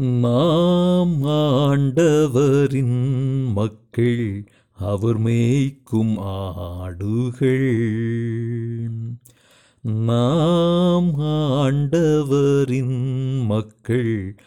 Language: Tamil